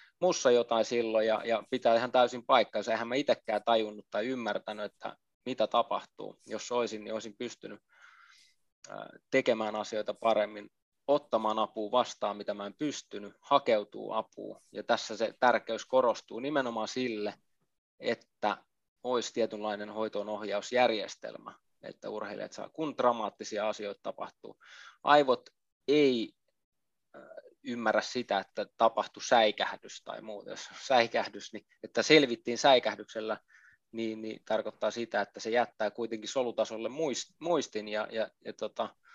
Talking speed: 125 wpm